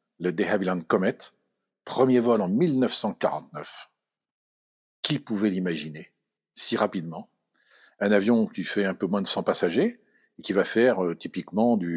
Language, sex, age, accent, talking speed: French, male, 50-69, French, 145 wpm